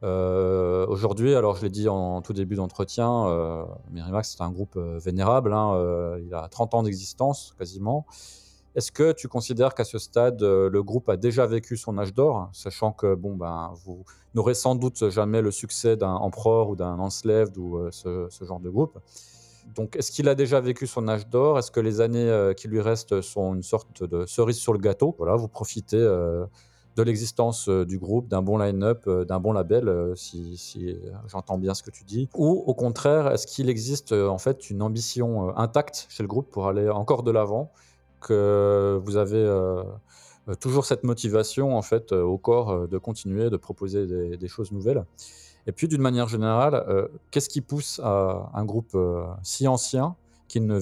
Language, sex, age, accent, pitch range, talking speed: French, male, 30-49, French, 95-120 Hz, 195 wpm